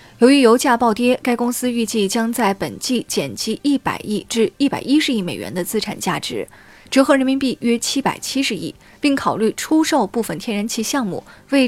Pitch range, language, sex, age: 205-260 Hz, Chinese, female, 20-39